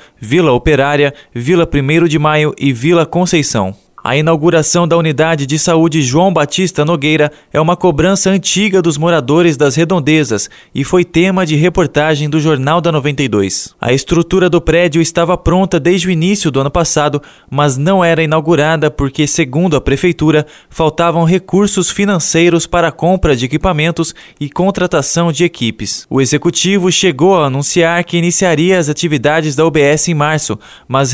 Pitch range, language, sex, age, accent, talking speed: 150-175 Hz, Portuguese, male, 20-39, Brazilian, 155 wpm